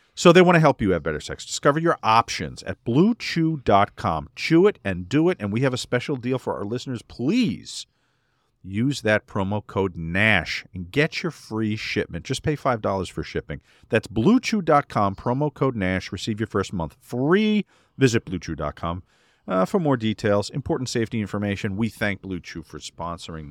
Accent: American